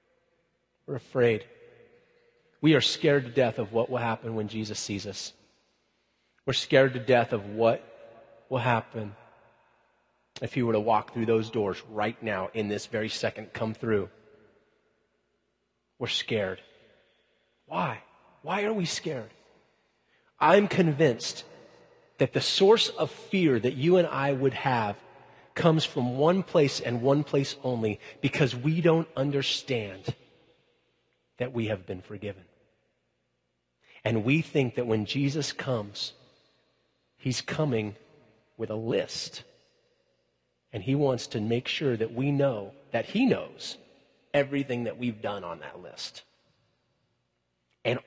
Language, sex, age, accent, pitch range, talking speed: English, male, 30-49, American, 110-150 Hz, 135 wpm